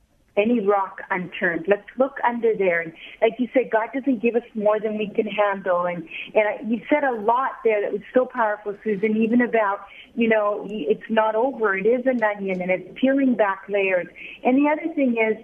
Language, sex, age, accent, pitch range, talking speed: English, female, 50-69, American, 210-255 Hz, 205 wpm